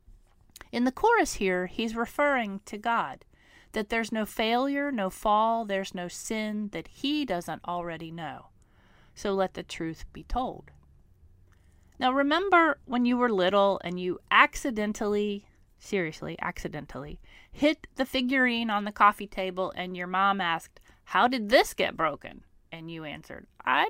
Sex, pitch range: female, 180-255 Hz